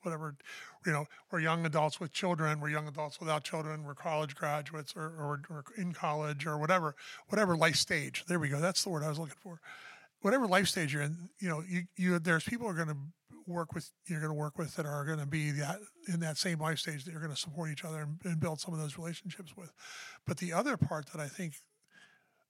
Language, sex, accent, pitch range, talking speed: English, male, American, 150-175 Hz, 225 wpm